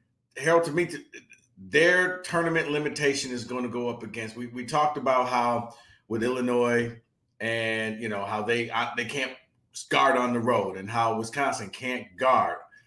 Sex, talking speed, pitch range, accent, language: male, 165 wpm, 120-175 Hz, American, English